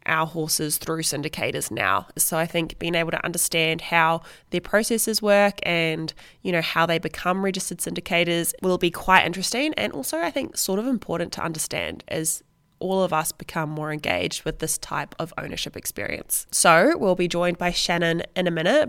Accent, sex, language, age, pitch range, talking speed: Australian, female, English, 20-39, 165-185 Hz, 185 wpm